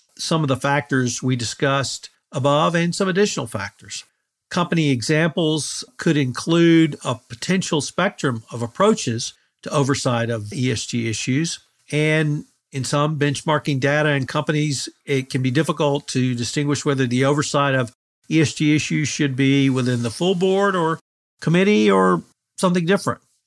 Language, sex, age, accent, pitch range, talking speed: English, male, 50-69, American, 125-155 Hz, 140 wpm